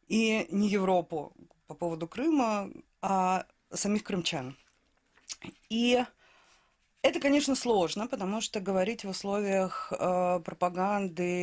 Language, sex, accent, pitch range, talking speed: Russian, female, native, 160-210 Hz, 105 wpm